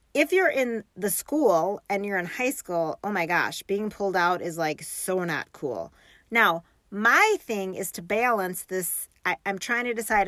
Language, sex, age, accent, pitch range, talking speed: English, female, 40-59, American, 190-245 Hz, 195 wpm